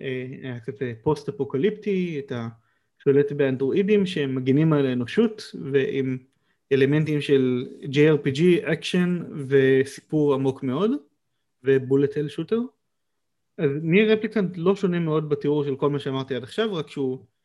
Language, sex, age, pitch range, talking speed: Hebrew, male, 30-49, 130-160 Hz, 125 wpm